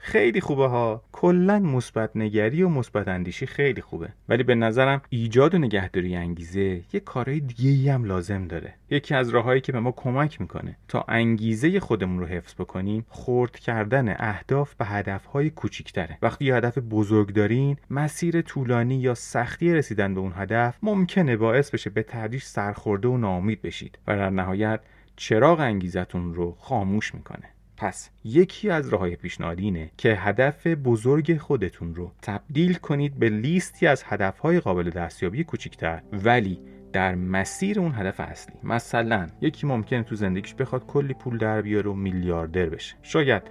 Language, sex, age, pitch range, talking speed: Persian, male, 30-49, 100-135 Hz, 155 wpm